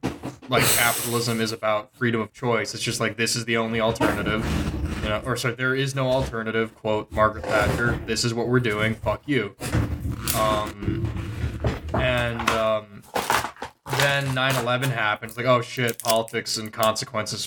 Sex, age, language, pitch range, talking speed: male, 20-39, English, 110-125 Hz, 155 wpm